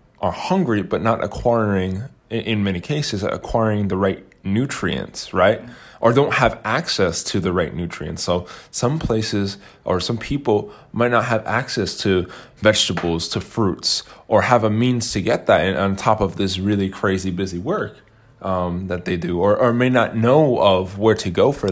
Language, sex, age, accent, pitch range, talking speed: English, male, 20-39, American, 95-120 Hz, 175 wpm